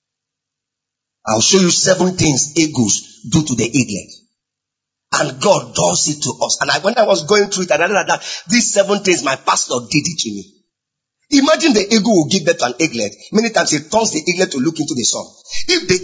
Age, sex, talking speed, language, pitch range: 40-59, male, 220 wpm, English, 135-215 Hz